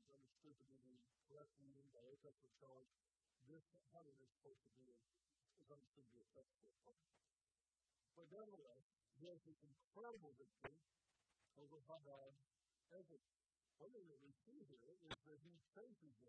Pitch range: 145-200 Hz